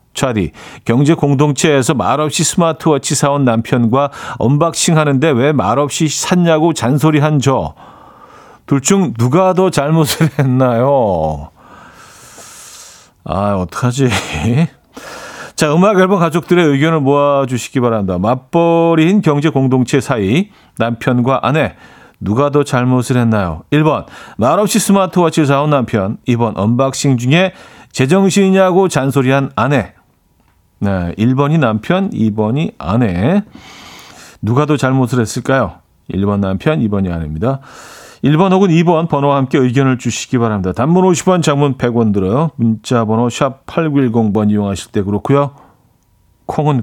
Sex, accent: male, native